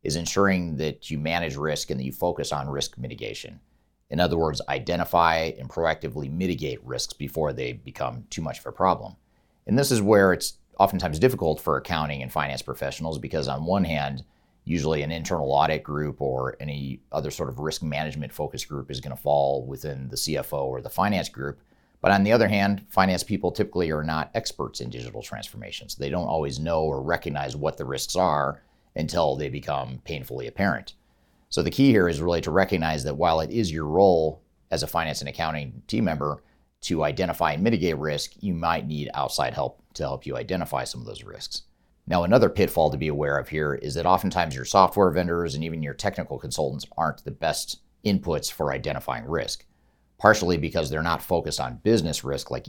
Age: 40-59